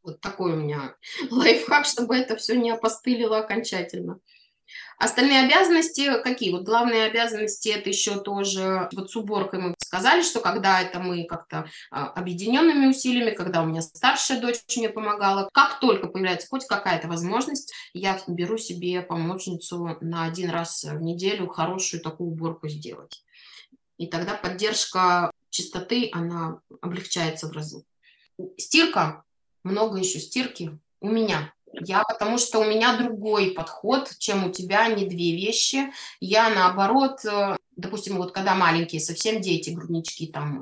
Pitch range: 175-235 Hz